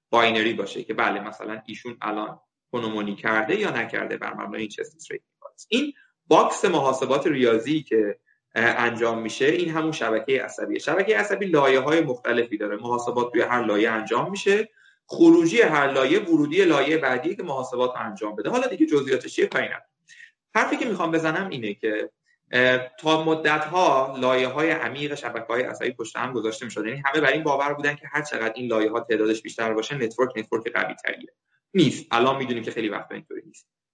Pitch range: 110-160 Hz